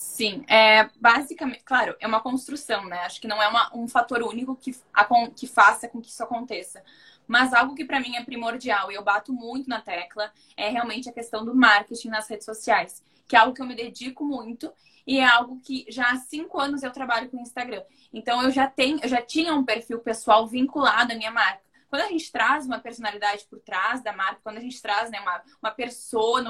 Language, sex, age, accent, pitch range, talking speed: Portuguese, female, 10-29, Brazilian, 220-260 Hz, 215 wpm